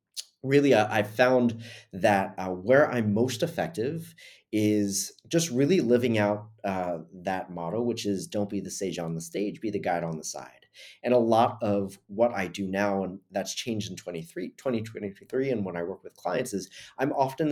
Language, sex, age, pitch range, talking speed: English, male, 30-49, 95-125 Hz, 190 wpm